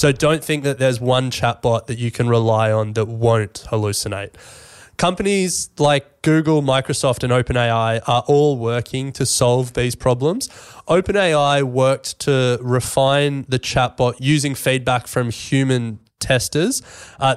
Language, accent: English, Australian